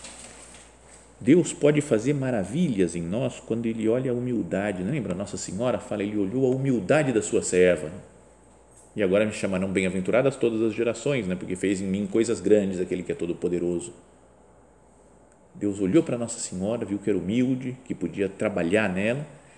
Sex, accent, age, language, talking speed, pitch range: male, Brazilian, 40-59, Portuguese, 170 wpm, 90-125 Hz